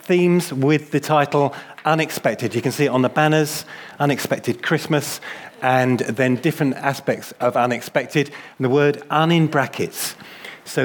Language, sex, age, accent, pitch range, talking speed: English, male, 30-49, British, 120-155 Hz, 150 wpm